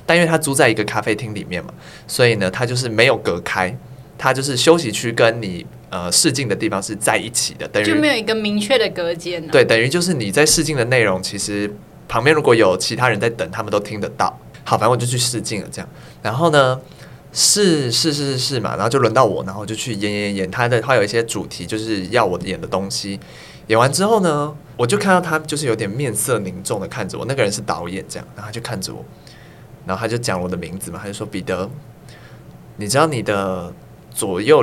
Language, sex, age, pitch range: Chinese, male, 20-39, 105-150 Hz